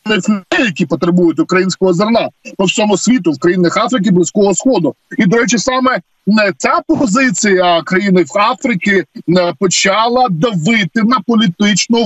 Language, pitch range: Ukrainian, 180-245 Hz